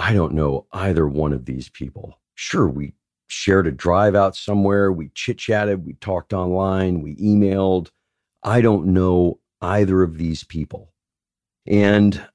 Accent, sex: American, male